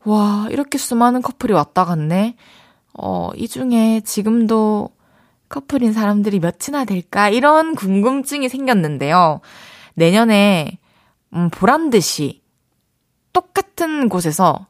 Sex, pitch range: female, 165-235 Hz